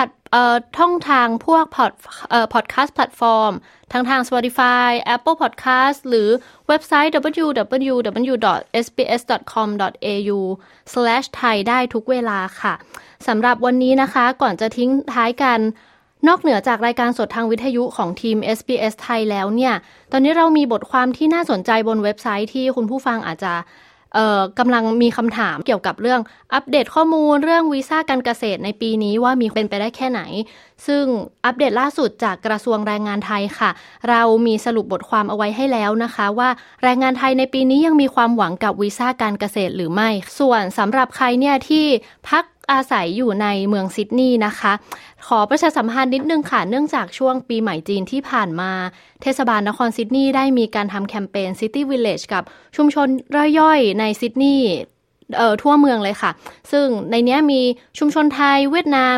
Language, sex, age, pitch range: Thai, female, 20-39, 215-265 Hz